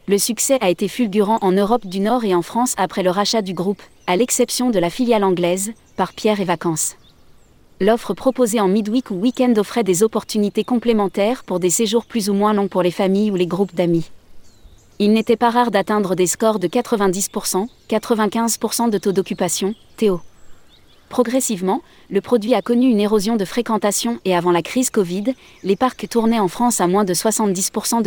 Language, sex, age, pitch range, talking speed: French, female, 20-39, 185-230 Hz, 190 wpm